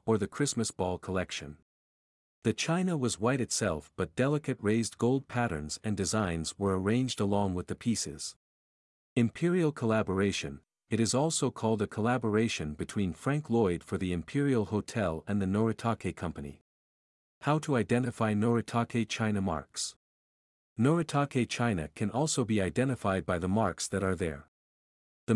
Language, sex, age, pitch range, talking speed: English, male, 50-69, 95-120 Hz, 145 wpm